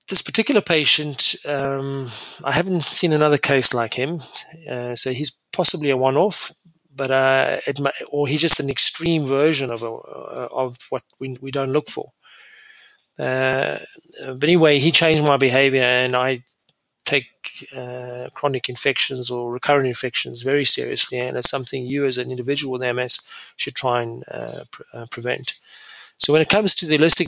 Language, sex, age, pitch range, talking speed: English, male, 30-49, 125-150 Hz, 170 wpm